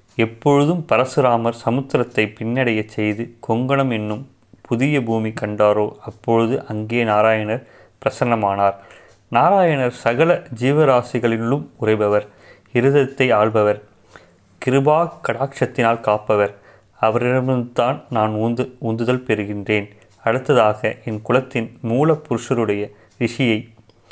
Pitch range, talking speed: 110-130 Hz, 80 wpm